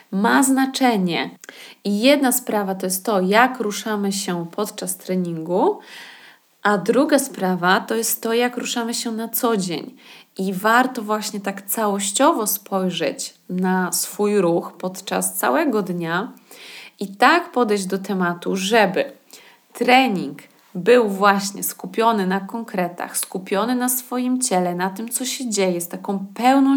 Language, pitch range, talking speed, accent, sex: Polish, 190-250 Hz, 135 wpm, native, female